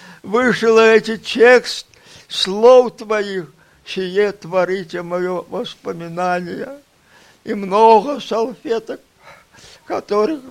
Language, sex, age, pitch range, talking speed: Russian, male, 50-69, 190-230 Hz, 75 wpm